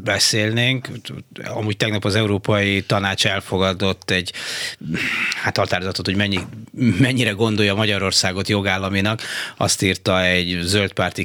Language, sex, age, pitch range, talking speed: Hungarian, male, 30-49, 95-115 Hz, 105 wpm